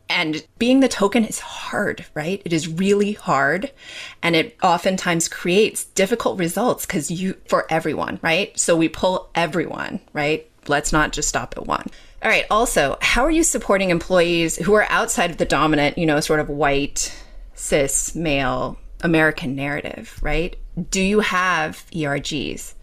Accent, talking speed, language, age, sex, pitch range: American, 160 wpm, English, 30-49, female, 150-190 Hz